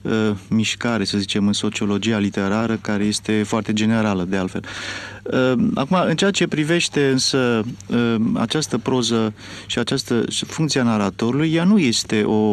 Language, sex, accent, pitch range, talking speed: Romanian, male, native, 100-135 Hz, 140 wpm